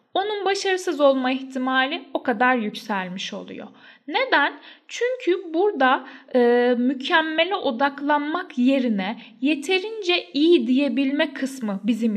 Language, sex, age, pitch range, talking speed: Turkish, female, 10-29, 225-290 Hz, 100 wpm